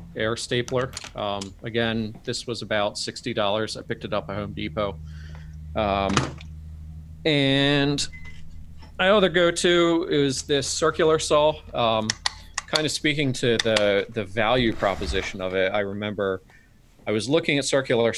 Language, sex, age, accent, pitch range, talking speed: English, male, 30-49, American, 100-125 Hz, 140 wpm